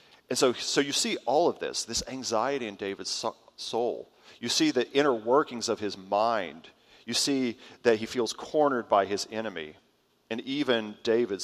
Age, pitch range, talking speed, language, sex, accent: 40-59, 115-145 Hz, 175 wpm, English, male, American